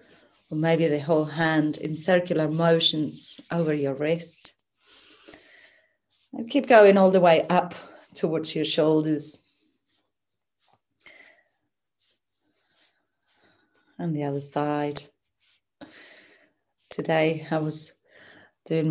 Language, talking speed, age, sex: English, 90 wpm, 30-49, female